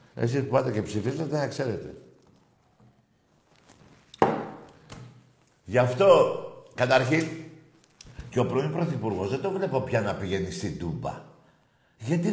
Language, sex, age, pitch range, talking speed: Greek, male, 60-79, 125-180 Hz, 110 wpm